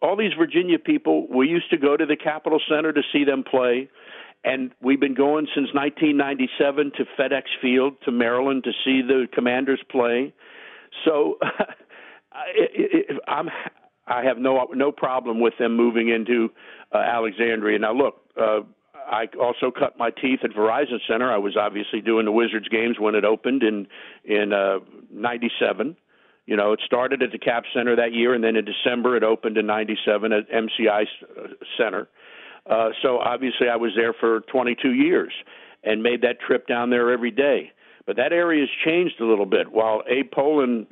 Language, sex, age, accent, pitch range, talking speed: English, male, 50-69, American, 115-145 Hz, 180 wpm